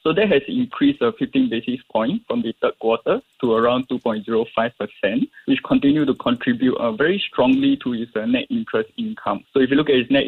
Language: English